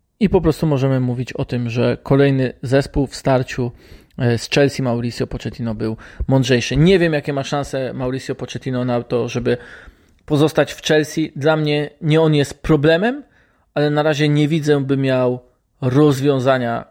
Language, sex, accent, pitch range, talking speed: Polish, male, native, 120-145 Hz, 160 wpm